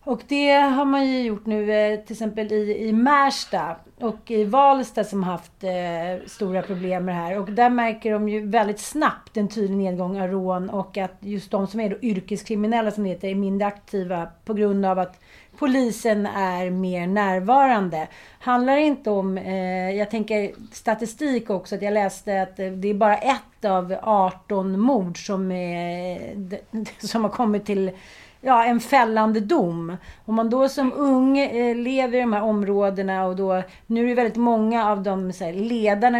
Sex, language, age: female, Swedish, 40-59